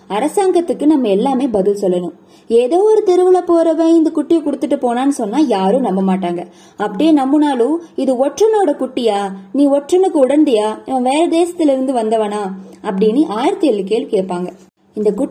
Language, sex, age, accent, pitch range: Tamil, female, 20-39, native, 210-320 Hz